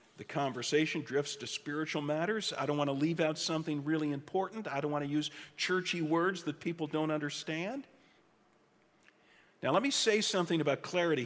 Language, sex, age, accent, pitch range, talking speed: English, male, 50-69, American, 140-175 Hz, 175 wpm